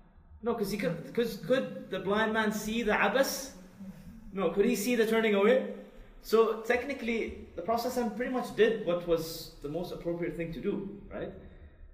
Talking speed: 165 wpm